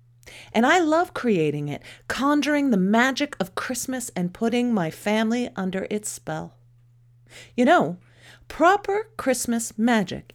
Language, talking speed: English, 130 wpm